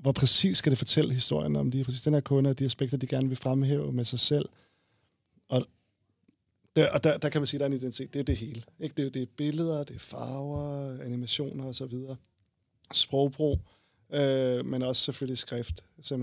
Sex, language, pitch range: male, Danish, 120-145 Hz